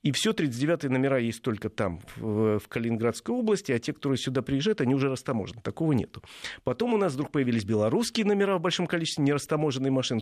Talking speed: 190 wpm